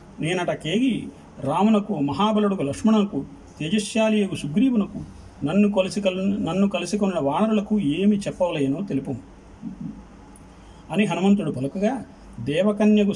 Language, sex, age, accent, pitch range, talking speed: Telugu, male, 40-59, native, 150-210 Hz, 95 wpm